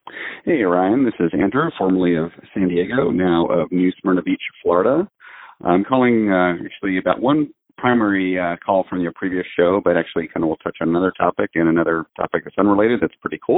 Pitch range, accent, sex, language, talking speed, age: 90-105 Hz, American, male, English, 200 wpm, 40-59